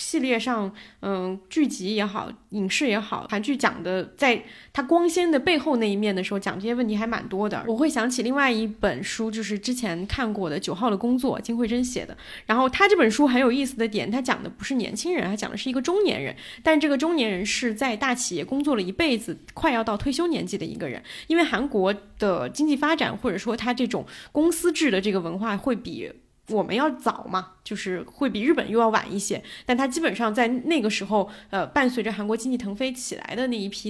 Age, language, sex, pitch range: 20-39, Chinese, female, 205-255 Hz